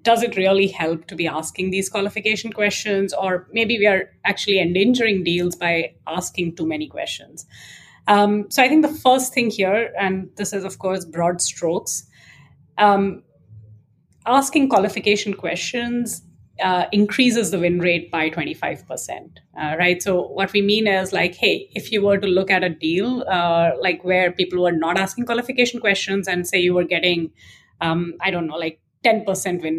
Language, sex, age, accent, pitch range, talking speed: English, female, 30-49, Indian, 175-205 Hz, 175 wpm